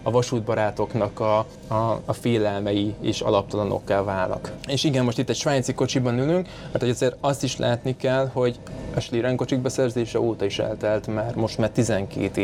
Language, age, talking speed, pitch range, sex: Hungarian, 20-39, 170 wpm, 105-130 Hz, male